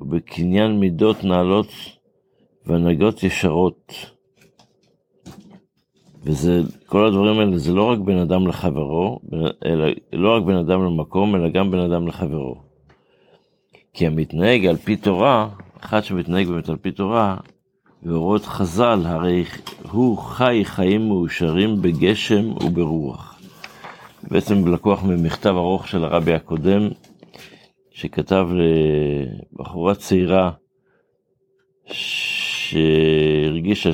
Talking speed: 105 wpm